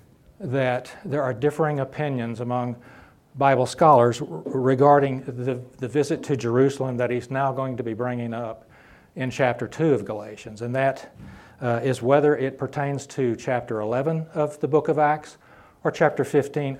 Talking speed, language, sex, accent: 160 wpm, English, male, American